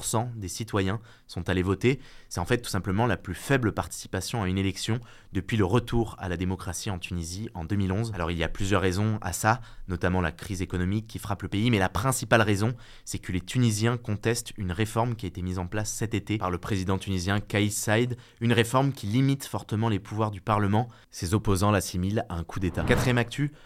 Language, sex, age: French, male, 20-39